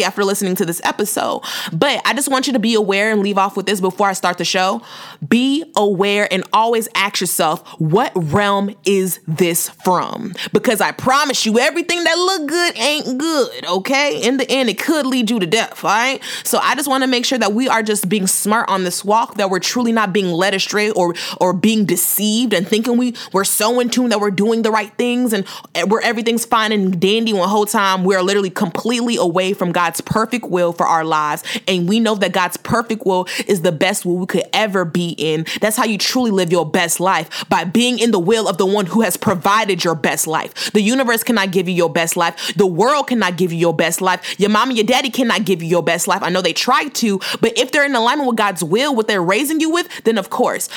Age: 20-39